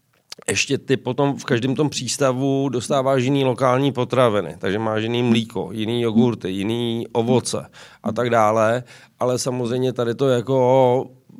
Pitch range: 115-135 Hz